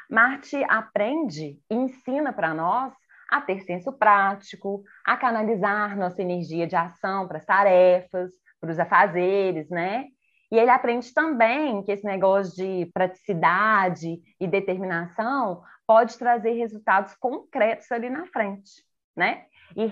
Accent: Brazilian